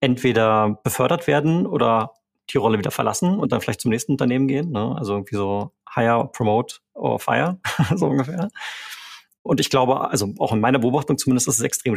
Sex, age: male, 30-49